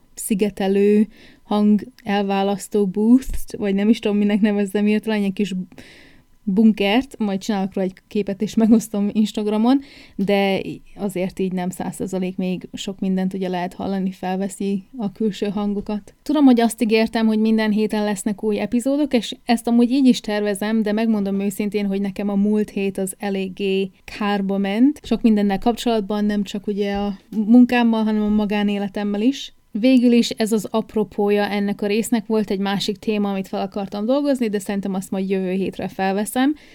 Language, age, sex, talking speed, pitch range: Hungarian, 20-39, female, 160 wpm, 200-225 Hz